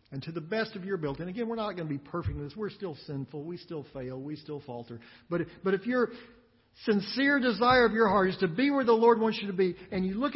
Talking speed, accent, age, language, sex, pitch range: 280 wpm, American, 50-69, English, male, 145-235 Hz